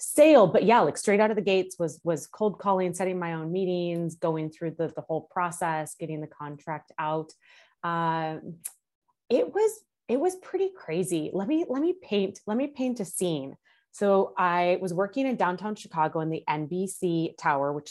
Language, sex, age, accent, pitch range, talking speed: English, female, 20-39, American, 145-190 Hz, 190 wpm